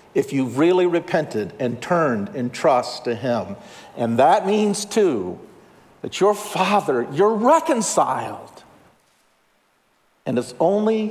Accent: American